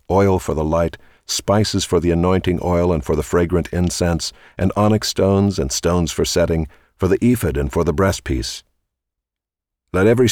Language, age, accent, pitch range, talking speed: English, 50-69, American, 80-95 Hz, 175 wpm